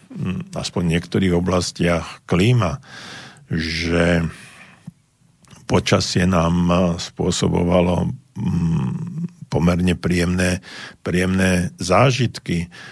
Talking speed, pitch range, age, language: 60 wpm, 85-95 Hz, 50-69, Slovak